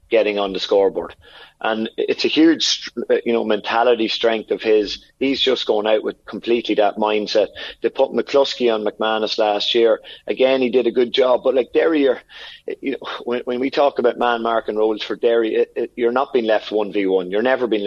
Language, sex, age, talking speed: English, male, 30-49, 195 wpm